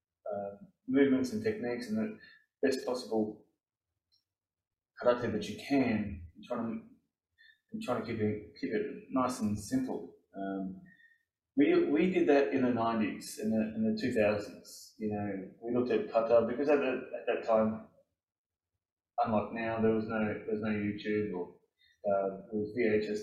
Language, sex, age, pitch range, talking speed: English, male, 20-39, 105-140 Hz, 160 wpm